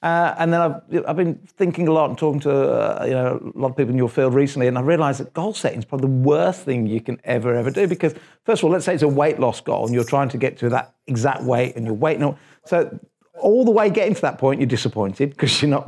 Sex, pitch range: male, 130-165 Hz